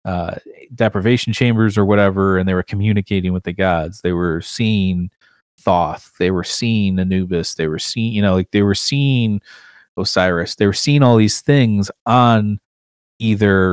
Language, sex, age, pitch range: English, male, 30-49, 90-105 Hz